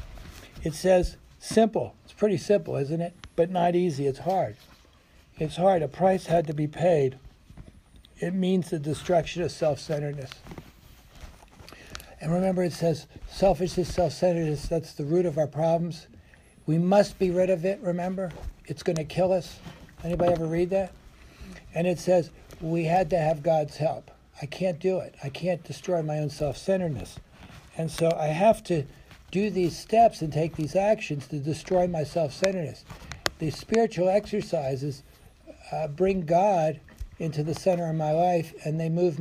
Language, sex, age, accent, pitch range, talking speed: English, male, 60-79, American, 150-185 Hz, 160 wpm